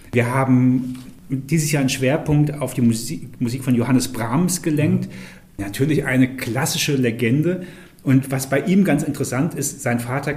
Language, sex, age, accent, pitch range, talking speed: German, male, 40-59, German, 120-155 Hz, 155 wpm